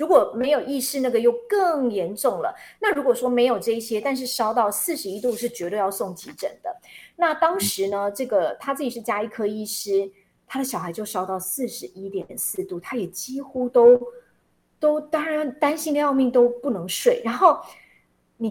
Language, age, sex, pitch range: Chinese, 30-49, female, 220-335 Hz